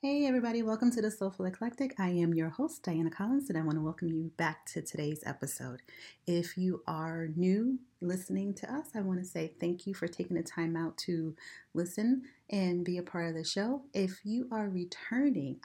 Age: 30-49